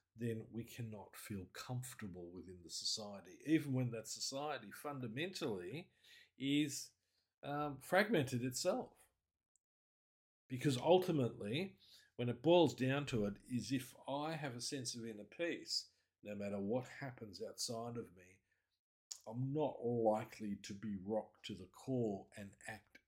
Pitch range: 105-135 Hz